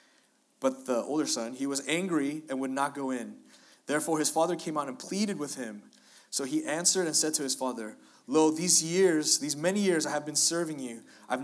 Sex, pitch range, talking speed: male, 125-165 Hz, 215 wpm